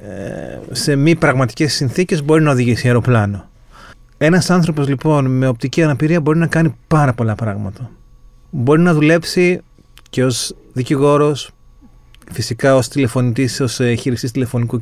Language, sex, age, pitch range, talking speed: Greek, male, 30-49, 125-155 Hz, 130 wpm